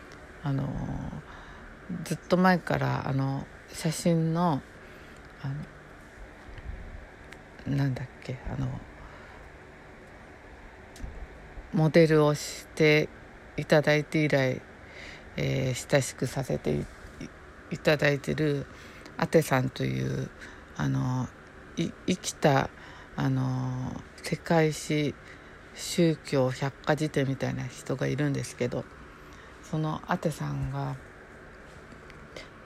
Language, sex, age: Japanese, female, 50-69